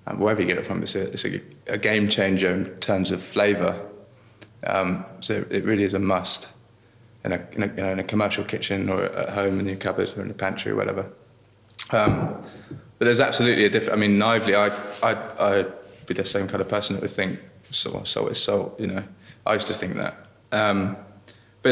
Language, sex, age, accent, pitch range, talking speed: English, male, 20-39, British, 95-110 Hz, 225 wpm